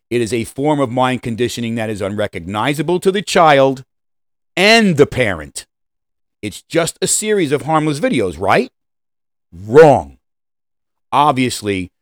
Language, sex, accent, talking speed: English, male, American, 130 wpm